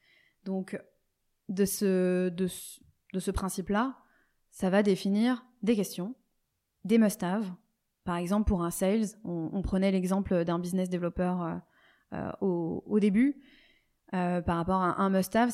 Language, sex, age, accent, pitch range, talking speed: French, female, 20-39, French, 180-210 Hz, 150 wpm